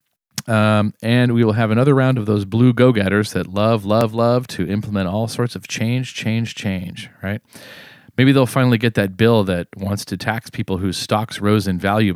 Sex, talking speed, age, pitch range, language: male, 200 wpm, 40-59, 100-130 Hz, English